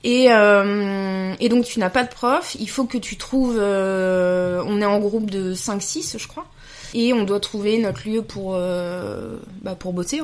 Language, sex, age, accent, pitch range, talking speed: French, female, 20-39, French, 185-235 Hz, 200 wpm